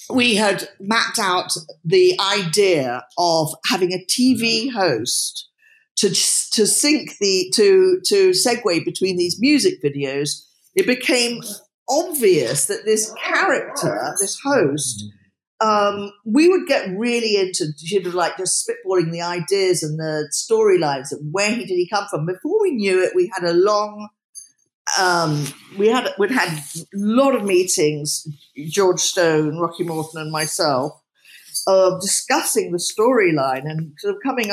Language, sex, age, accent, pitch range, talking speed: English, female, 50-69, British, 180-255 Hz, 150 wpm